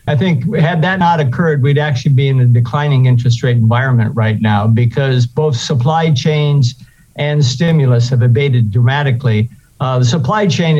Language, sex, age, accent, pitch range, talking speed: English, male, 50-69, American, 120-145 Hz, 165 wpm